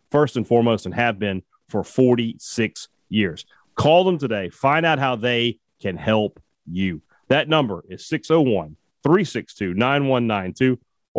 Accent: American